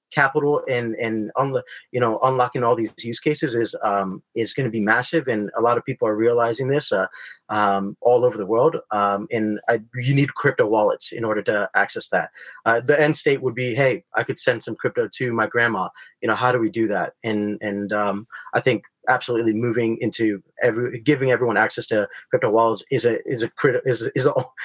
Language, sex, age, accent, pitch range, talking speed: English, male, 30-49, American, 115-140 Hz, 220 wpm